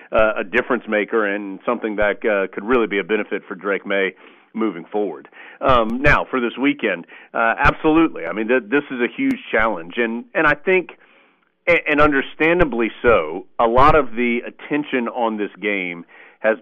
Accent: American